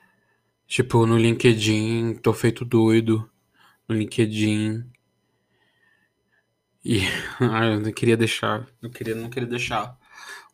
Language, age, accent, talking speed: Portuguese, 20-39, Brazilian, 115 wpm